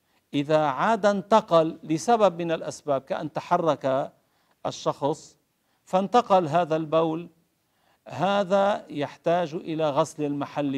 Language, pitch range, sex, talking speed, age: Arabic, 140-175 Hz, male, 95 wpm, 50-69